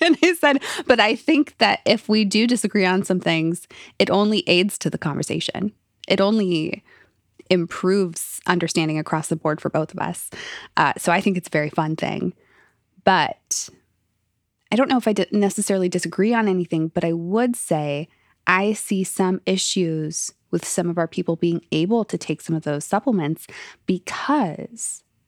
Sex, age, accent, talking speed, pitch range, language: female, 20-39, American, 170 wpm, 160-205 Hz, English